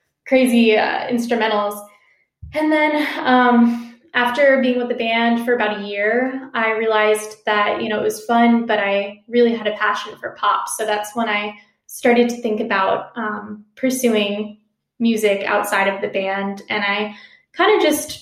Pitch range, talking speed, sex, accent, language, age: 210-235 Hz, 170 wpm, female, American, English, 10-29